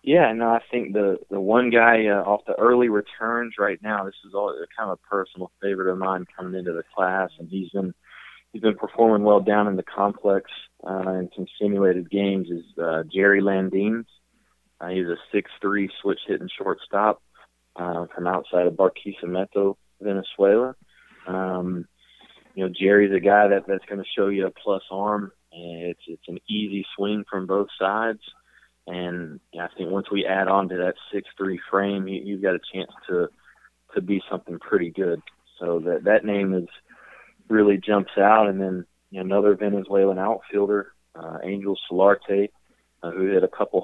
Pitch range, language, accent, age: 90-100 Hz, English, American, 20-39